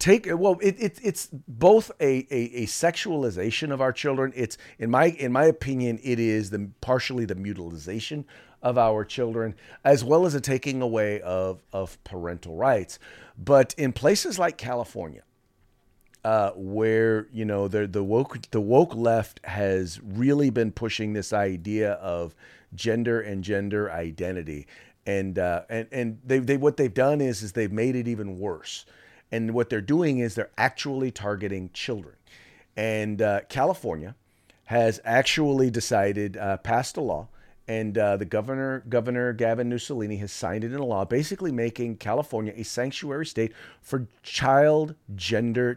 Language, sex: English, male